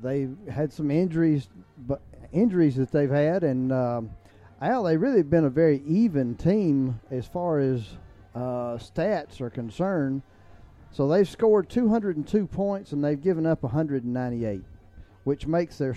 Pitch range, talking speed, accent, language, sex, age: 115-165 Hz, 150 wpm, American, English, male, 40-59